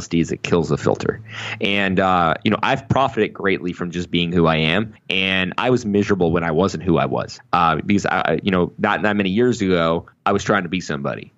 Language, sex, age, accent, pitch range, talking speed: English, male, 20-39, American, 80-95 Hz, 230 wpm